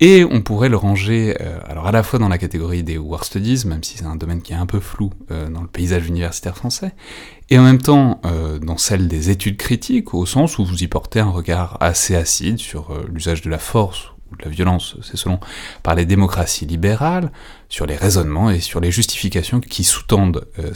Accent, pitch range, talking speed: French, 85-110 Hz, 225 wpm